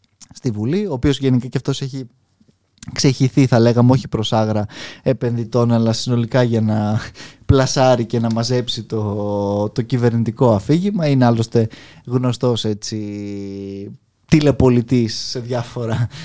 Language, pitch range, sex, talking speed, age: Greek, 110-140 Hz, male, 120 wpm, 20-39